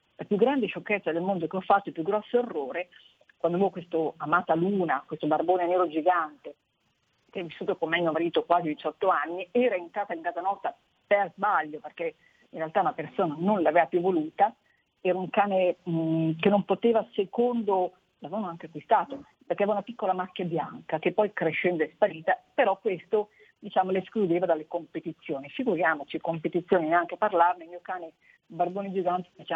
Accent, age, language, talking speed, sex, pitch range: native, 40-59, Italian, 175 wpm, female, 160-195 Hz